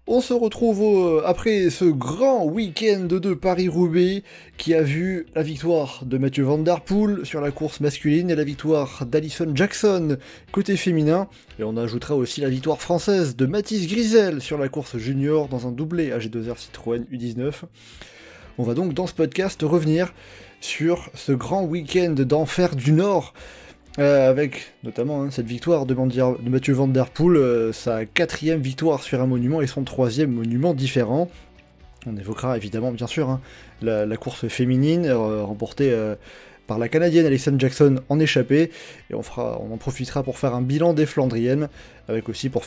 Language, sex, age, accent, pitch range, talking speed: French, male, 20-39, French, 125-170 Hz, 175 wpm